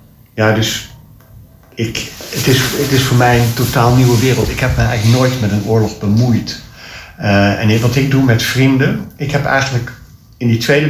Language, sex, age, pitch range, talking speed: Dutch, male, 50-69, 110-140 Hz, 180 wpm